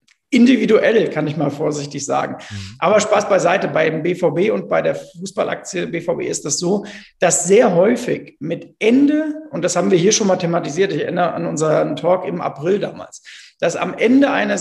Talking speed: 180 wpm